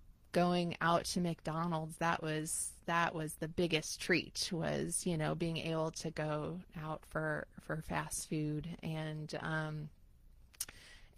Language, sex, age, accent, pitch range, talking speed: English, female, 30-49, American, 160-190 Hz, 135 wpm